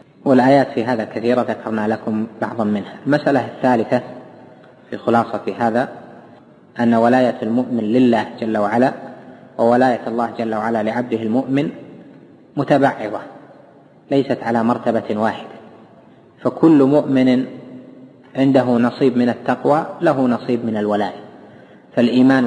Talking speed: 110 wpm